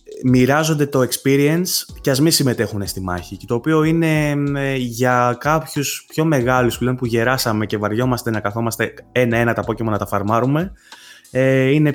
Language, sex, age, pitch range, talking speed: Greek, male, 20-39, 105-130 Hz, 160 wpm